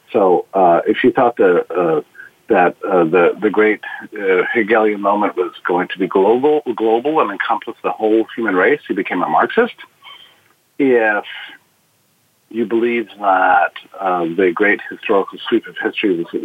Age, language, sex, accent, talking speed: 50-69, English, male, American, 160 wpm